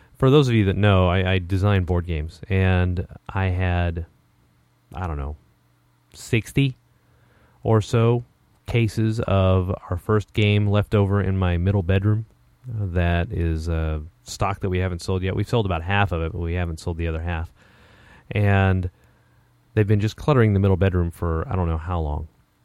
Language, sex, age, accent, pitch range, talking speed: English, male, 30-49, American, 85-105 Hz, 180 wpm